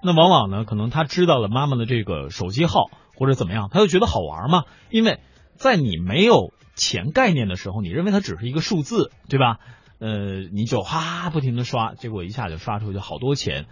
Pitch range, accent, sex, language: 100-150 Hz, native, male, Chinese